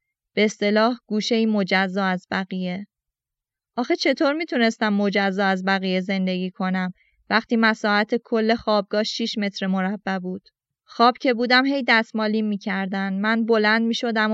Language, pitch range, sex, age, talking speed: Persian, 195-235 Hz, female, 20-39, 135 wpm